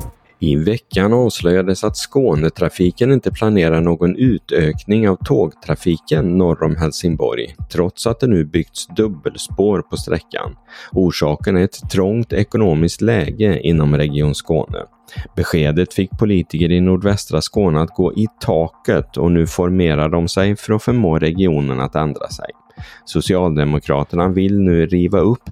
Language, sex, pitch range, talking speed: Swedish, male, 80-95 Hz, 135 wpm